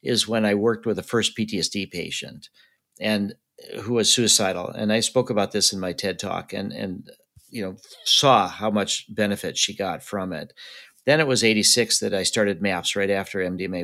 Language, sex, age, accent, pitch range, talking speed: English, male, 50-69, American, 95-115 Hz, 195 wpm